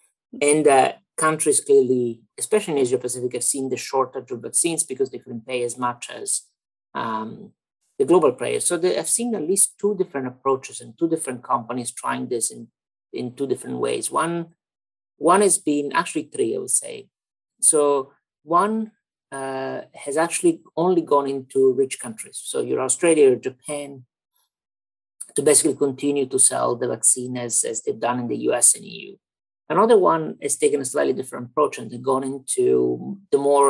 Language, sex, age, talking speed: English, male, 50-69, 175 wpm